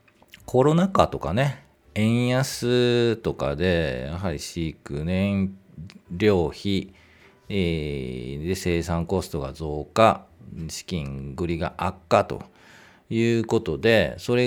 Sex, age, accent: male, 40-59, native